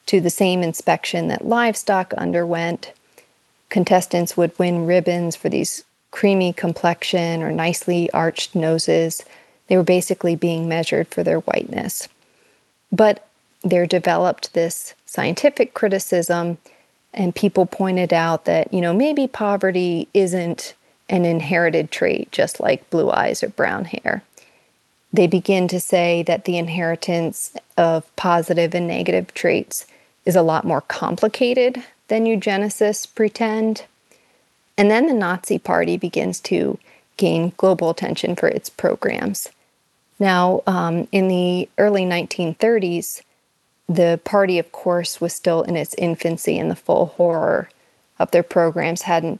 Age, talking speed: 40-59, 130 wpm